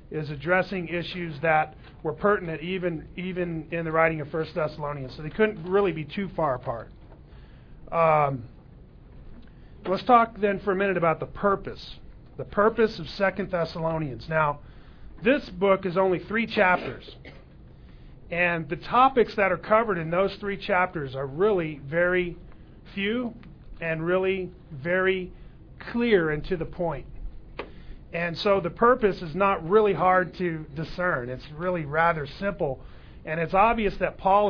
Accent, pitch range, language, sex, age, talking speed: American, 160-200 Hz, English, male, 40-59, 150 wpm